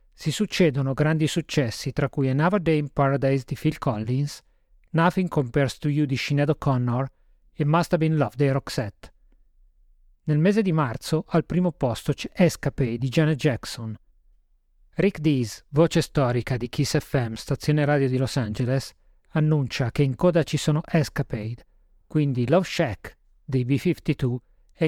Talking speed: 150 wpm